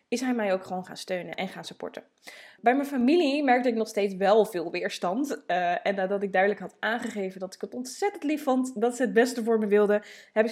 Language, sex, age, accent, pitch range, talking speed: Dutch, female, 20-39, Dutch, 200-255 Hz, 235 wpm